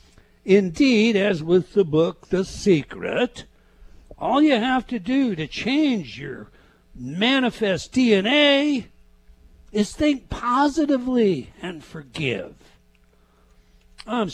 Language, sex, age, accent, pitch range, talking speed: English, male, 60-79, American, 145-230 Hz, 95 wpm